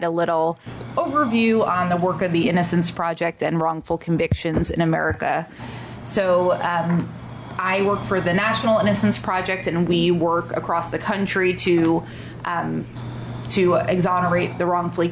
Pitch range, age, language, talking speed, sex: 170-195 Hz, 20-39, English, 145 wpm, female